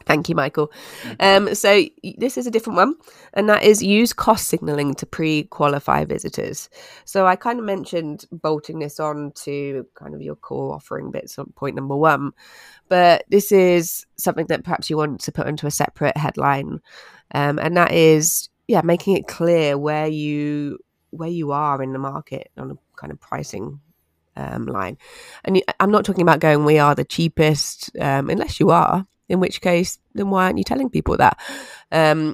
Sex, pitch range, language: female, 140-180 Hz, English